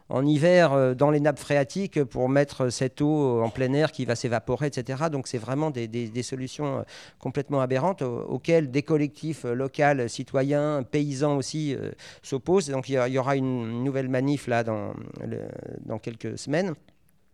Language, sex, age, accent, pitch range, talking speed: French, male, 50-69, French, 125-150 Hz, 160 wpm